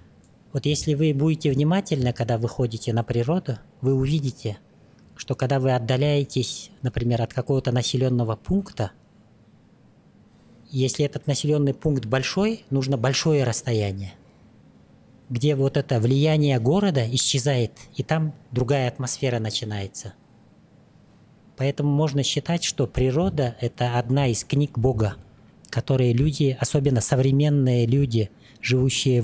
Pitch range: 120-145 Hz